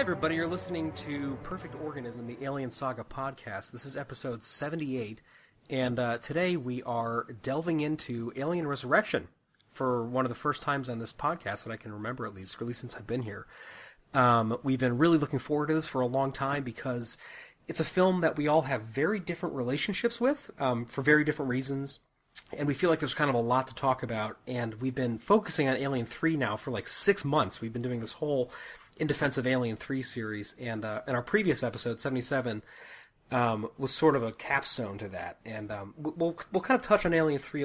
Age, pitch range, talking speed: 30-49, 120-150 Hz, 210 wpm